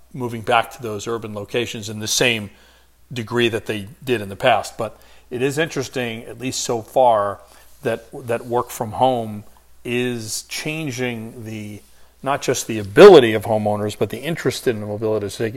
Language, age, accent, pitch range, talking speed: English, 40-59, American, 105-125 Hz, 170 wpm